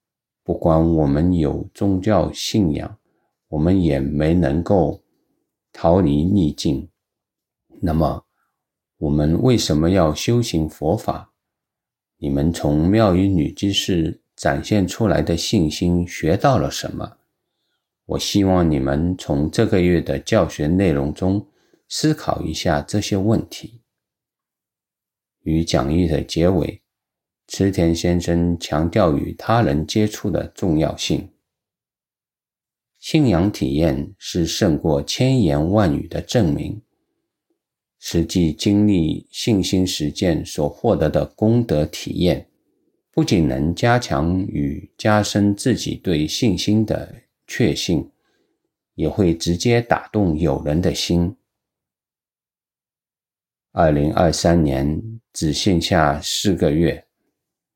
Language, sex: English, male